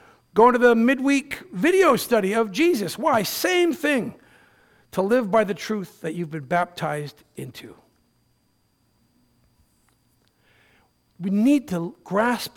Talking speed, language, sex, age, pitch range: 120 wpm, English, male, 50-69, 175-245 Hz